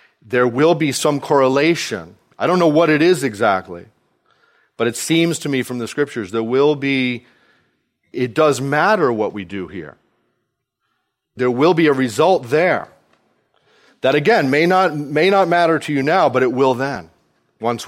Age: 40-59